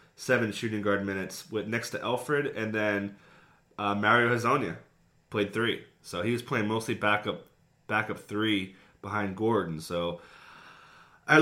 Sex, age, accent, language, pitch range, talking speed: male, 30-49, American, English, 105-135 Hz, 140 wpm